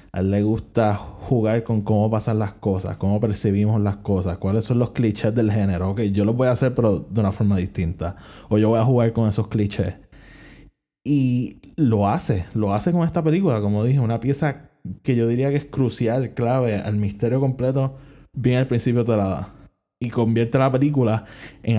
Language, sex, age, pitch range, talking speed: Spanish, male, 20-39, 100-120 Hz, 200 wpm